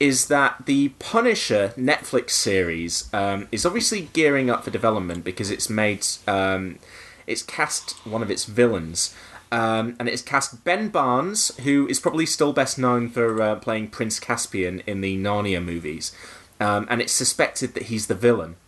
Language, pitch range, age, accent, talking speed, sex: English, 95-135 Hz, 20-39, British, 170 wpm, male